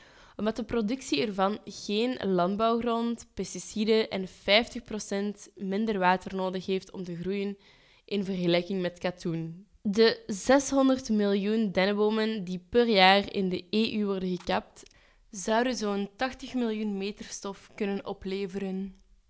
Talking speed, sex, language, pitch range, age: 125 wpm, female, Dutch, 190-230 Hz, 10-29